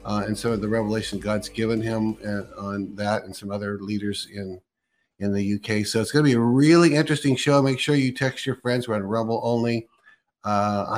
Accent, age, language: American, 50-69, English